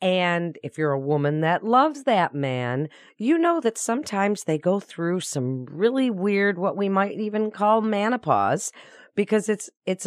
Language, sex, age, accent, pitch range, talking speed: English, female, 40-59, American, 155-215 Hz, 165 wpm